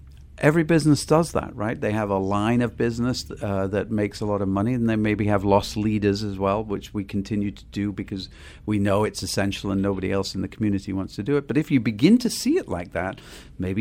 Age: 50-69